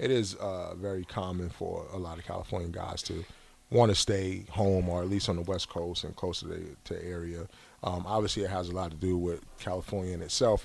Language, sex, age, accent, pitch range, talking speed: English, male, 30-49, American, 85-100 Hz, 225 wpm